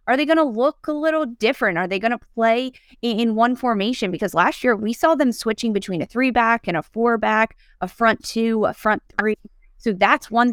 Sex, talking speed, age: female, 215 wpm, 20-39